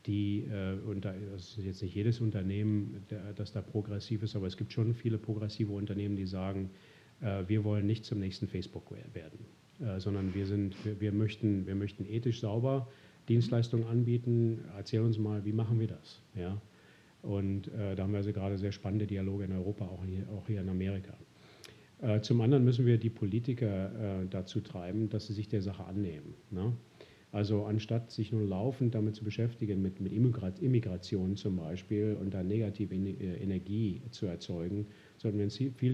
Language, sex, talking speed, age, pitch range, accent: German, male, 165 wpm, 40-59, 100-115 Hz, German